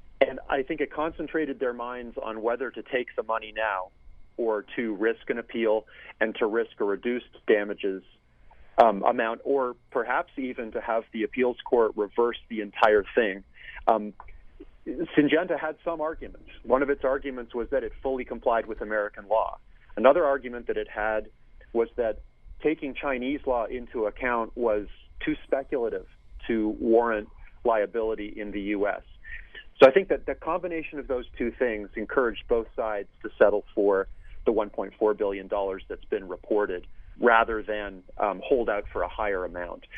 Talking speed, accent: 160 wpm, American